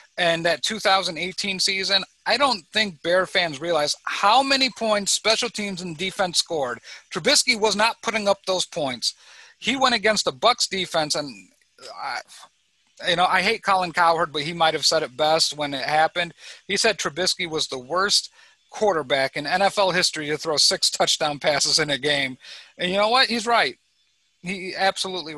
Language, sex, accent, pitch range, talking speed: English, male, American, 155-200 Hz, 175 wpm